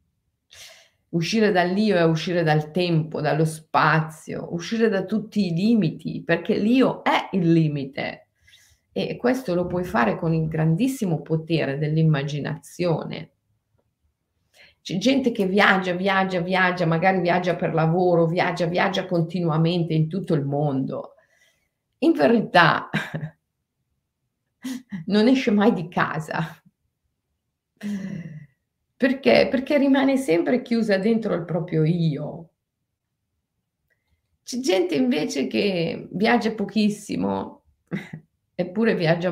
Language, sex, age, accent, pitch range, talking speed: Italian, female, 40-59, native, 160-215 Hz, 105 wpm